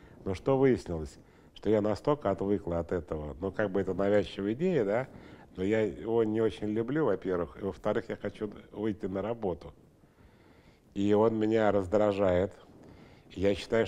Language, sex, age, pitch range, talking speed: Russian, male, 70-89, 90-110 Hz, 155 wpm